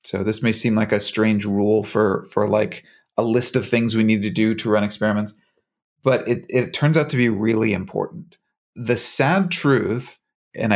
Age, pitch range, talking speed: 30-49, 110-145 Hz, 195 wpm